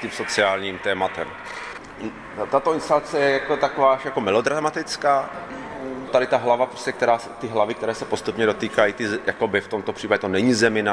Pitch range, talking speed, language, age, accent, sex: 90-115 Hz, 150 wpm, Czech, 30-49, native, male